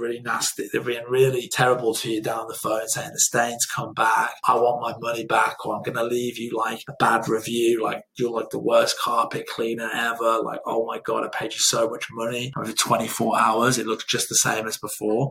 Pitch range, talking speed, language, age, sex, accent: 110-130 Hz, 235 wpm, English, 20-39, male, British